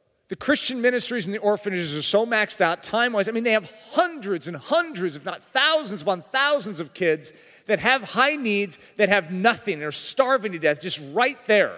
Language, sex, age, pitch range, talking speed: English, male, 40-59, 155-235 Hz, 205 wpm